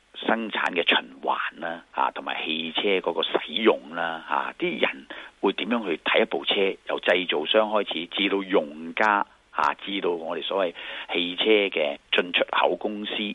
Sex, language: male, Chinese